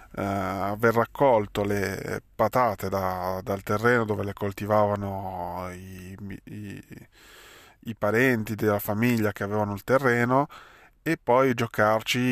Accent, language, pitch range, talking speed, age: native, Italian, 100-120 Hz, 100 wpm, 20-39